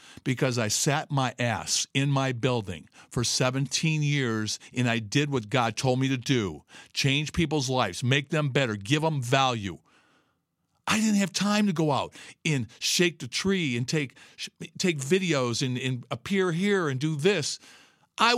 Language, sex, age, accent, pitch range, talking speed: English, male, 50-69, American, 140-210 Hz, 170 wpm